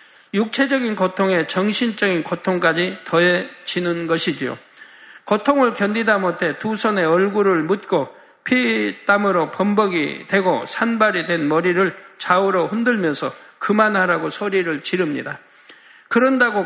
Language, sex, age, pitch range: Korean, male, 50-69, 175-215 Hz